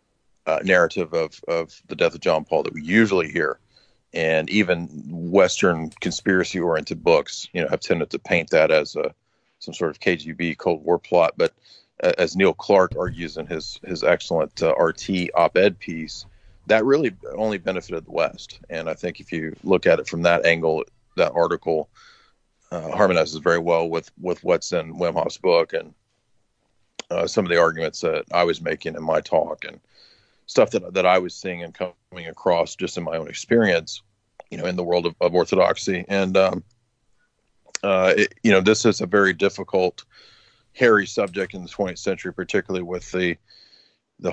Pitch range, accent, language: 90-110 Hz, American, English